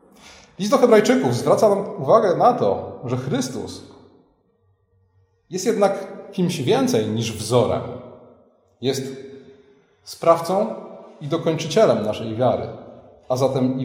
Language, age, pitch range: Polish, 30-49, 130-185 Hz